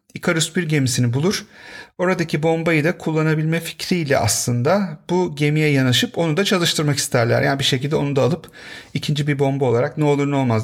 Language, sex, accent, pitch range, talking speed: Turkish, male, native, 145-195 Hz, 175 wpm